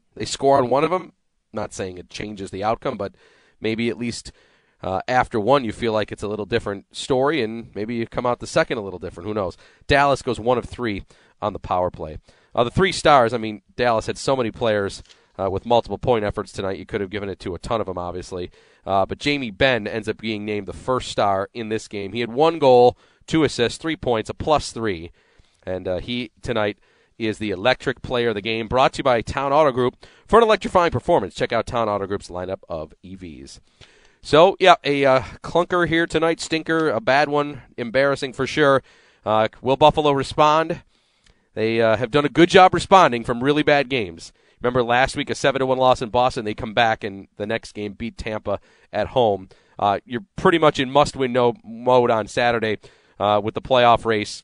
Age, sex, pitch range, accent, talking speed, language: 30-49, male, 105-140 Hz, American, 215 wpm, English